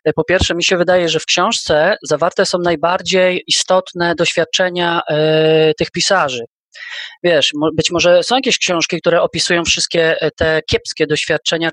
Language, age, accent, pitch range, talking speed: Polish, 30-49, native, 165-210 Hz, 140 wpm